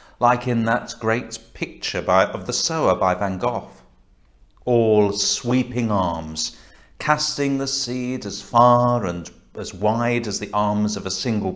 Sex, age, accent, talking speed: male, 50-69, British, 150 wpm